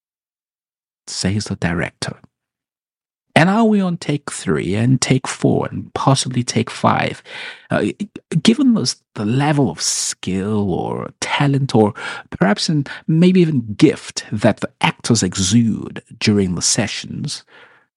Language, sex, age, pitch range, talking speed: English, male, 50-69, 105-145 Hz, 125 wpm